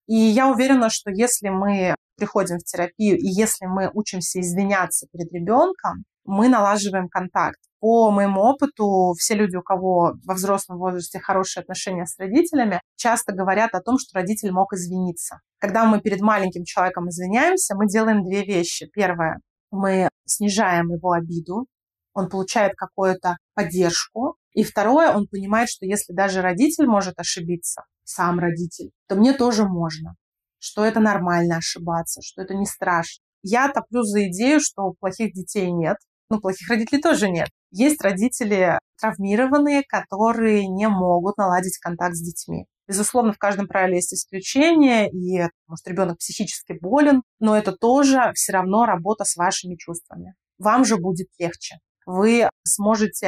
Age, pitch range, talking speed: 30-49, 180-220 Hz, 150 wpm